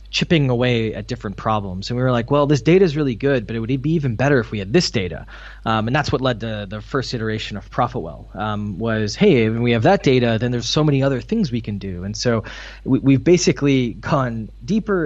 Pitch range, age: 105-135 Hz, 20-39